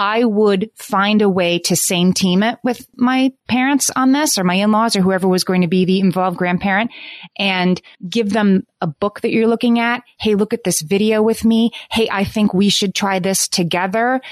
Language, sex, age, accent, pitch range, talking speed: English, female, 30-49, American, 165-205 Hz, 210 wpm